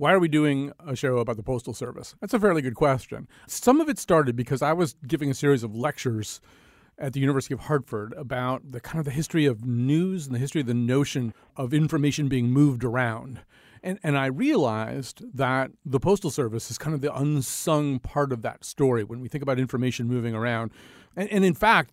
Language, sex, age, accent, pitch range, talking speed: English, male, 40-59, American, 125-155 Hz, 215 wpm